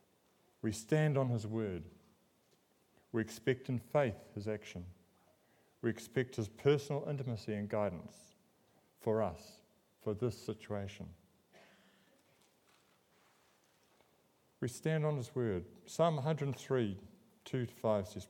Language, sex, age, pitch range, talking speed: English, male, 50-69, 100-135 Hz, 105 wpm